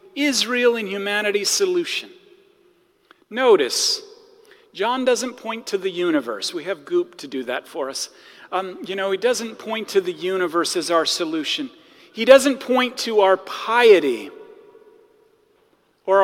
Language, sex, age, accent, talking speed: English, male, 40-59, American, 140 wpm